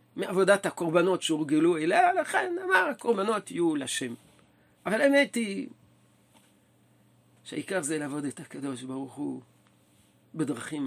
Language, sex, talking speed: Hebrew, male, 110 wpm